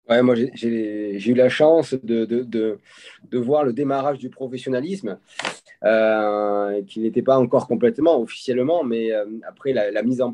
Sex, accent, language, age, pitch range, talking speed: male, French, French, 30-49, 105-130 Hz, 180 wpm